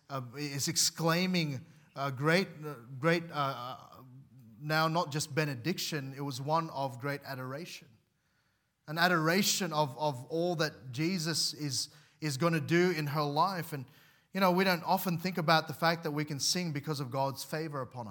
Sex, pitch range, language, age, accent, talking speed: male, 145-170 Hz, English, 30-49, Australian, 165 wpm